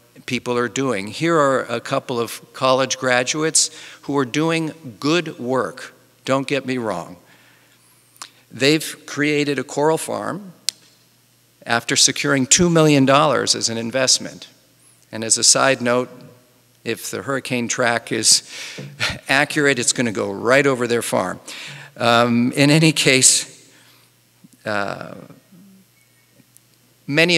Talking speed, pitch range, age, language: 125 wpm, 115-140 Hz, 50-69, English